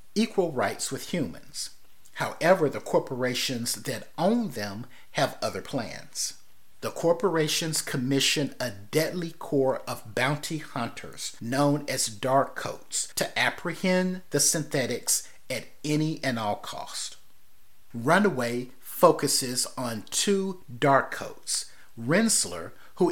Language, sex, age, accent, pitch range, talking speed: English, male, 50-69, American, 120-155 Hz, 110 wpm